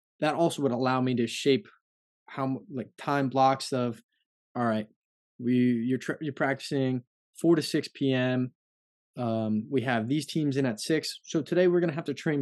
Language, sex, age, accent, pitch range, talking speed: English, male, 20-39, American, 125-150 Hz, 185 wpm